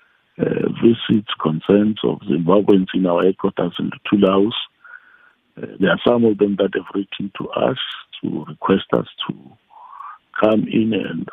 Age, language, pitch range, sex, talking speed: 50-69, English, 100-125 Hz, male, 160 wpm